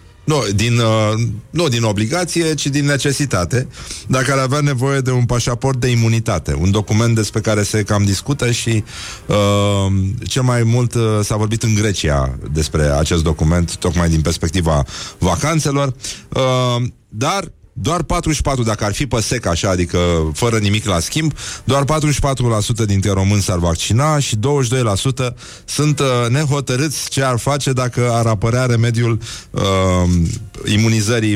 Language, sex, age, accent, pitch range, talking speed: Romanian, male, 30-49, native, 100-140 Hz, 130 wpm